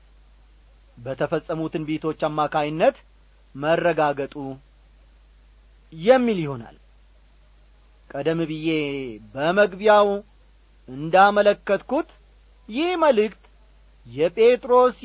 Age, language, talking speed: 40-59, Amharic, 50 wpm